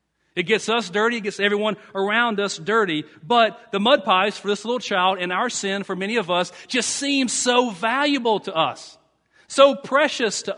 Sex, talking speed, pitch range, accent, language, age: male, 195 wpm, 130-215 Hz, American, English, 40-59